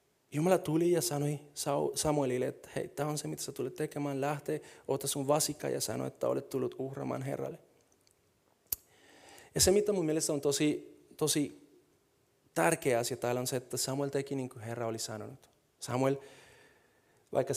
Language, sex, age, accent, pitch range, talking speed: Finnish, male, 30-49, native, 125-155 Hz, 160 wpm